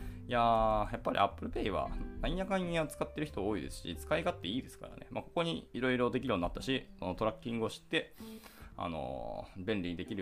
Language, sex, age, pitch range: Japanese, male, 20-39, 95-155 Hz